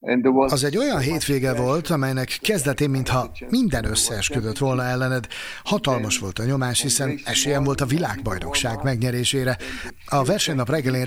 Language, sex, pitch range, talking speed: Hungarian, male, 125-150 Hz, 135 wpm